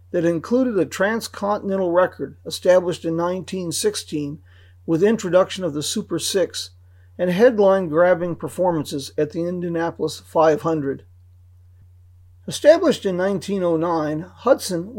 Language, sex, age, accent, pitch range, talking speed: English, male, 40-59, American, 135-205 Hz, 100 wpm